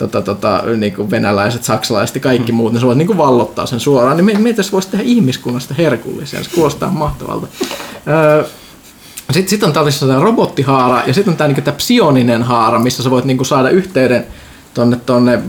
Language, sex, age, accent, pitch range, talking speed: Finnish, male, 20-39, native, 125-185 Hz, 210 wpm